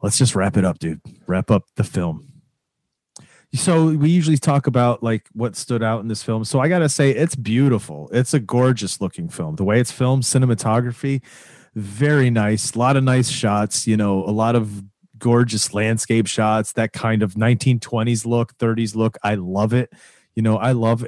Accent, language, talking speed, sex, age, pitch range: American, English, 190 wpm, male, 30-49, 110-130 Hz